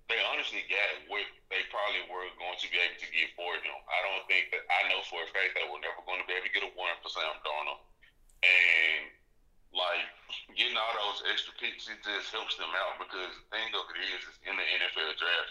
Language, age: English, 30-49